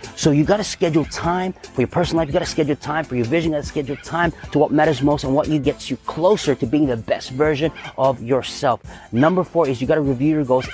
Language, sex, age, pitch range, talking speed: English, male, 30-49, 130-160 Hz, 270 wpm